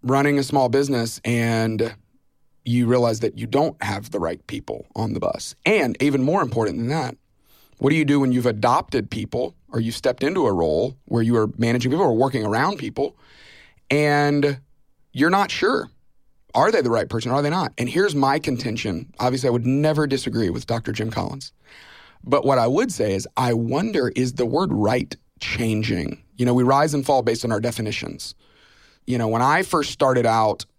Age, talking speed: 30-49, 200 wpm